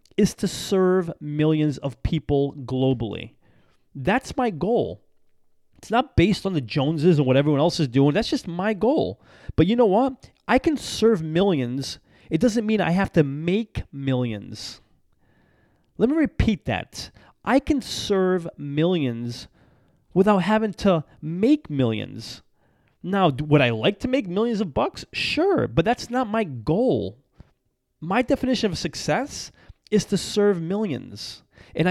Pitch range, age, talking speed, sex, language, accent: 140-215 Hz, 30-49, 150 wpm, male, English, American